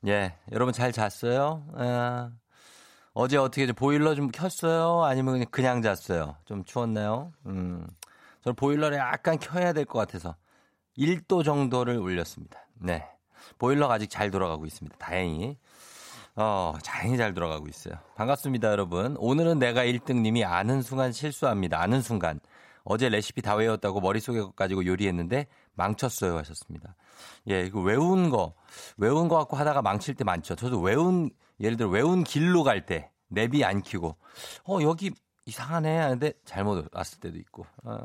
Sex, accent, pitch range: male, native, 95-145 Hz